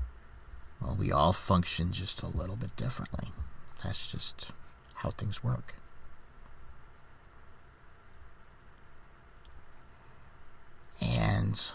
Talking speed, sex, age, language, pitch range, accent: 75 wpm, male, 50-69, English, 70-95 Hz, American